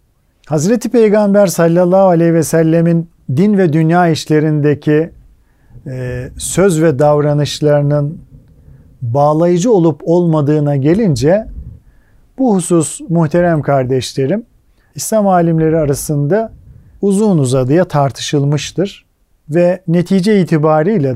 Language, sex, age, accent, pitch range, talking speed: Turkish, male, 50-69, native, 140-180 Hz, 85 wpm